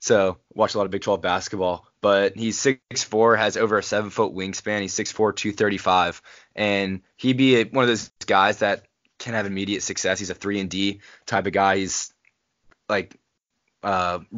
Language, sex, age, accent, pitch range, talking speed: English, male, 20-39, American, 95-110 Hz, 190 wpm